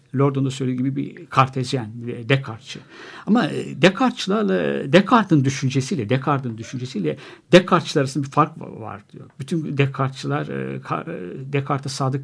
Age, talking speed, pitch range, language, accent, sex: 60-79, 115 wpm, 130-170 Hz, Turkish, native, male